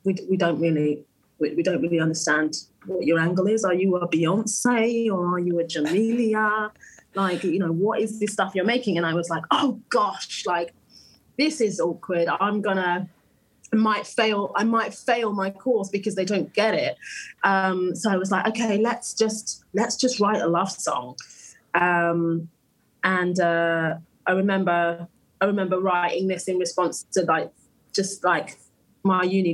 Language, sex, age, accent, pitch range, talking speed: English, female, 20-39, British, 175-220 Hz, 175 wpm